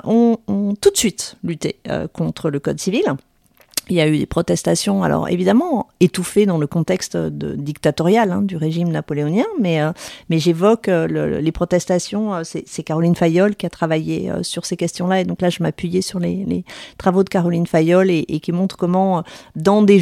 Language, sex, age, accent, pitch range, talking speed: French, female, 40-59, French, 165-195 Hz, 200 wpm